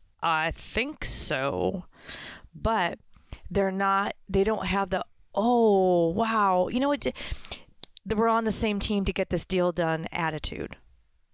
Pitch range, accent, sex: 175-225 Hz, American, female